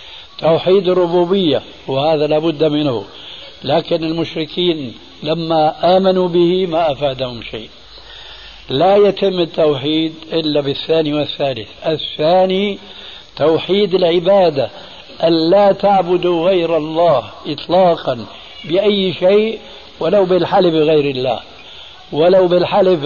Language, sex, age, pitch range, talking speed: Arabic, male, 60-79, 145-180 Hz, 95 wpm